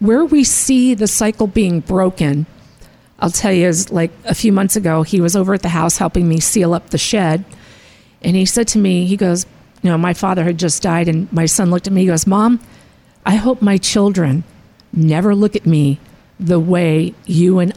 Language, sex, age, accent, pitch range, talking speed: English, female, 50-69, American, 170-220 Hz, 215 wpm